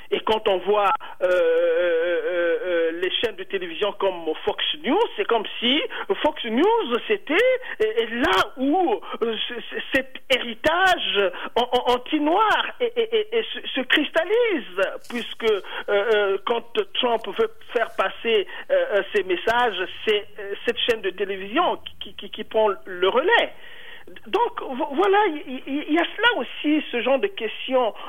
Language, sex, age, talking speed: French, male, 50-69, 130 wpm